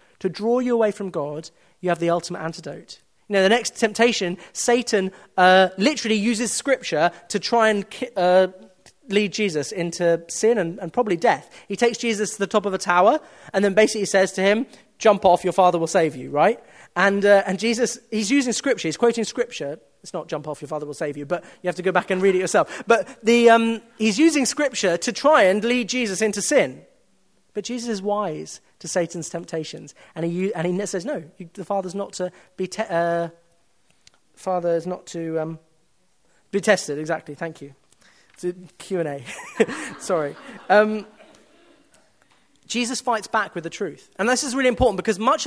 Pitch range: 175-225 Hz